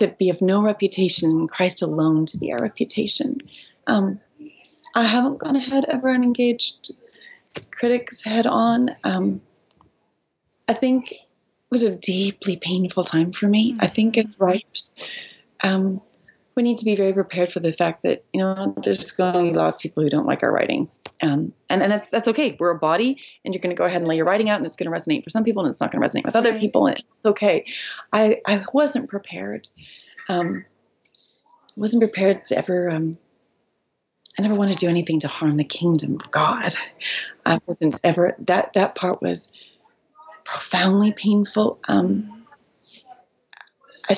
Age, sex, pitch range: 30-49, female, 180-235 Hz